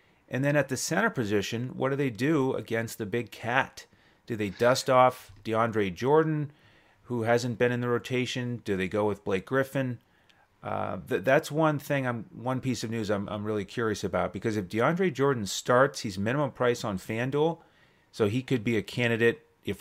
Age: 30-49